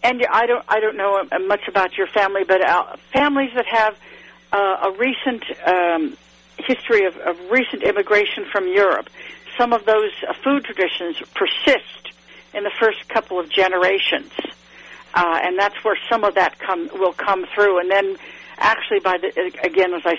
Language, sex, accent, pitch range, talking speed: English, female, American, 195-270 Hz, 165 wpm